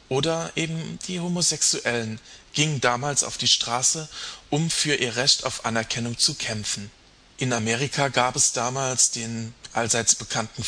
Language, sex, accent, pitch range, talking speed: German, male, German, 115-150 Hz, 140 wpm